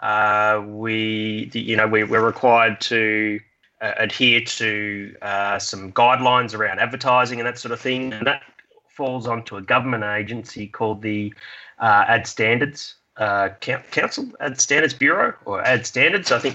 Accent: Australian